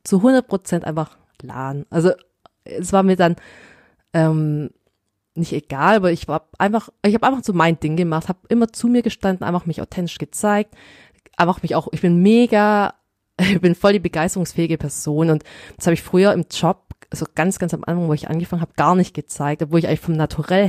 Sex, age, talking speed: female, 20-39, 200 wpm